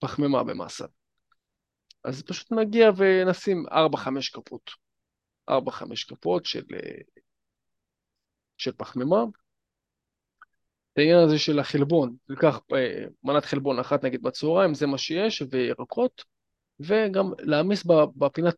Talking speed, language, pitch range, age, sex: 95 wpm, Hebrew, 140-185 Hz, 20-39, male